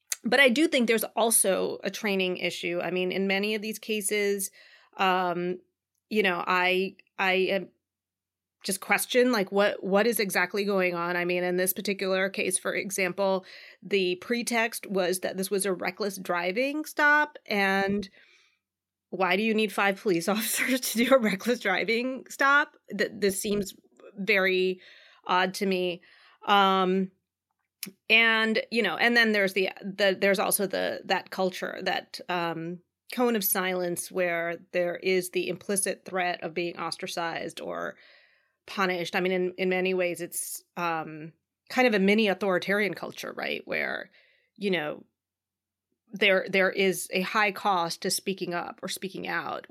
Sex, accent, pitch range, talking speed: female, American, 180-210 Hz, 155 wpm